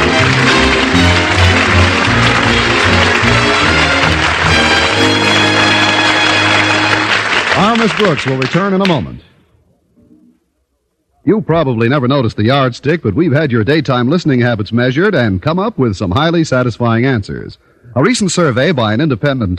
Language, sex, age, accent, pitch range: English, male, 50-69, American, 110-165 Hz